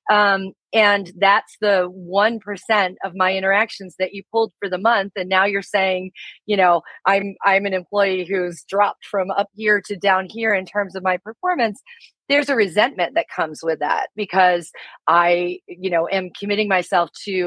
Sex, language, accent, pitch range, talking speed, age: female, English, American, 180-210 Hz, 180 wpm, 30-49